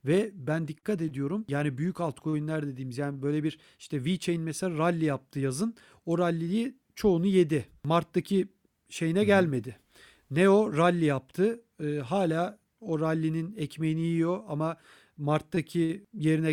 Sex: male